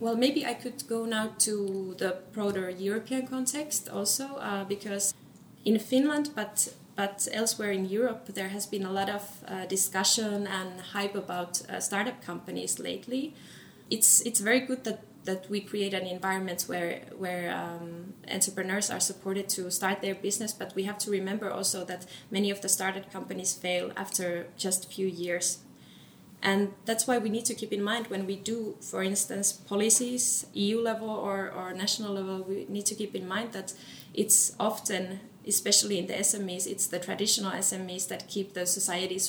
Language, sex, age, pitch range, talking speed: English, female, 20-39, 185-215 Hz, 175 wpm